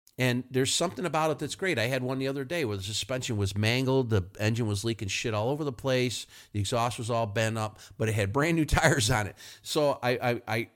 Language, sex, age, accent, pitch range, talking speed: English, male, 50-69, American, 100-125 Hz, 245 wpm